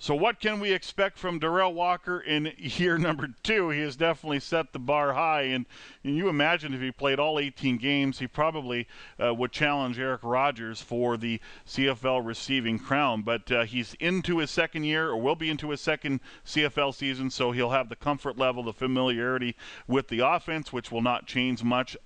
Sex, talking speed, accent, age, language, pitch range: male, 195 wpm, American, 40-59, English, 120-145 Hz